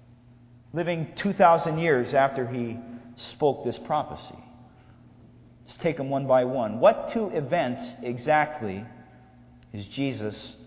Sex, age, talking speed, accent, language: male, 30-49, 115 wpm, American, English